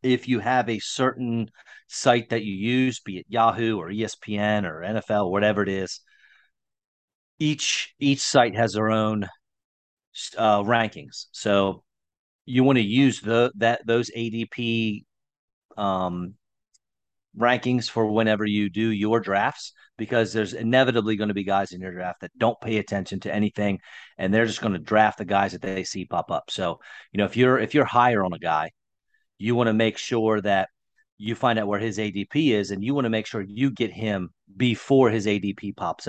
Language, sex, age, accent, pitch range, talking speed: English, male, 40-59, American, 105-120 Hz, 185 wpm